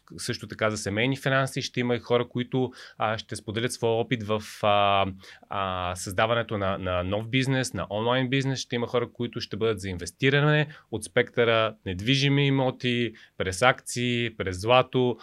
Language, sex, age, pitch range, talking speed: Bulgarian, male, 30-49, 110-145 Hz, 165 wpm